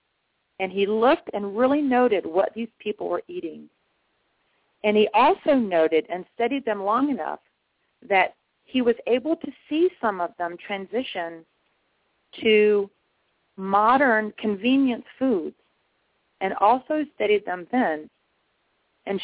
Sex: female